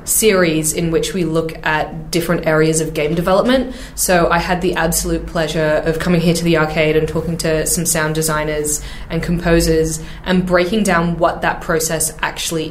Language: English